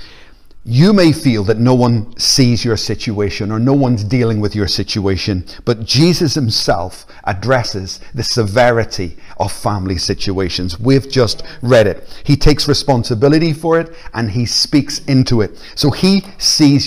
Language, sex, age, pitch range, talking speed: English, male, 50-69, 115-145 Hz, 150 wpm